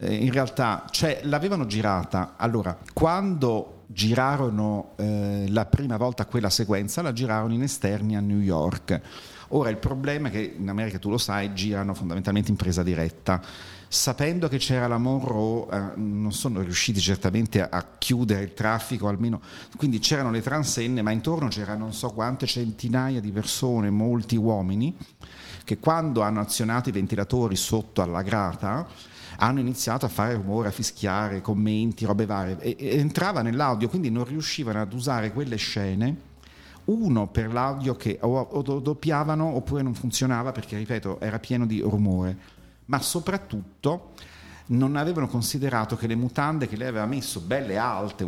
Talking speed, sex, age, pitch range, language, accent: 155 wpm, male, 50-69, 100-125 Hz, Italian, native